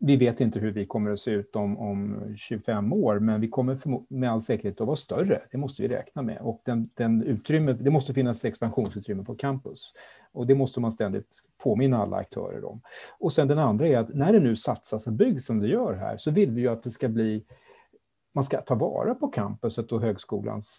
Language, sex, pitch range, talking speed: Swedish, male, 110-140 Hz, 230 wpm